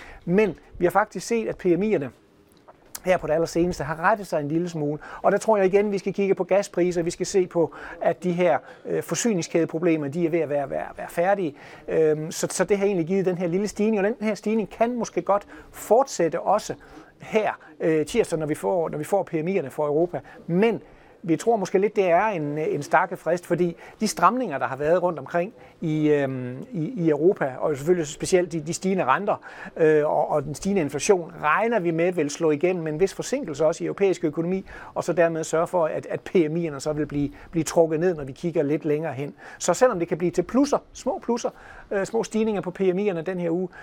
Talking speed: 215 wpm